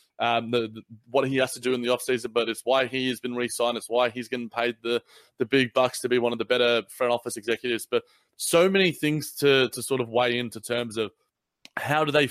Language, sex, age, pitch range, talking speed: English, male, 20-39, 115-130 Hz, 250 wpm